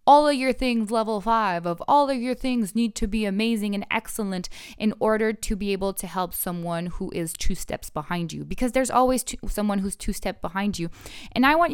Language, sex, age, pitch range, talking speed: English, female, 20-39, 190-240 Hz, 225 wpm